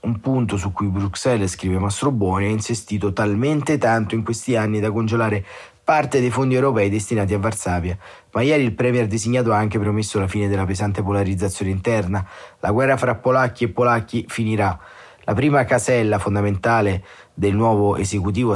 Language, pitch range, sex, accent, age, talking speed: Italian, 100-120 Hz, male, native, 30-49, 170 wpm